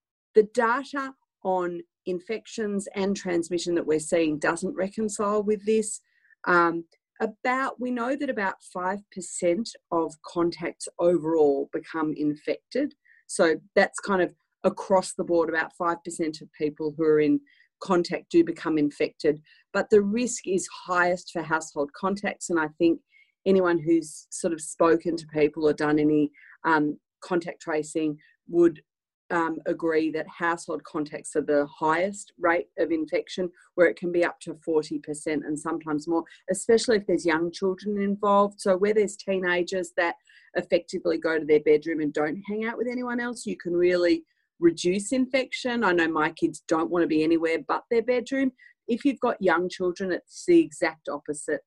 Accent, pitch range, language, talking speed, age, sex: Australian, 160-215 Hz, English, 160 wpm, 40-59, female